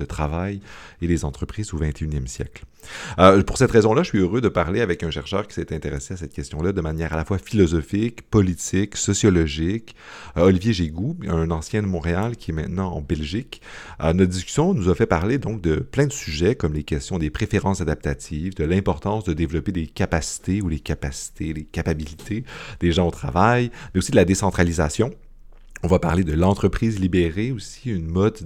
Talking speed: 195 wpm